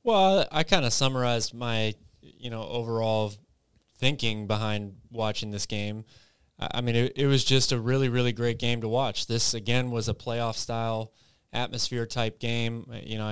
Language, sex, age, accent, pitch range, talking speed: English, male, 20-39, American, 110-120 Hz, 170 wpm